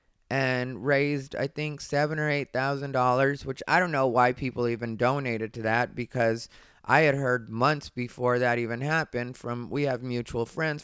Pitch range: 130-175 Hz